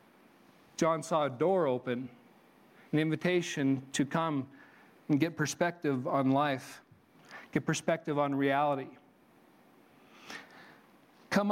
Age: 40-59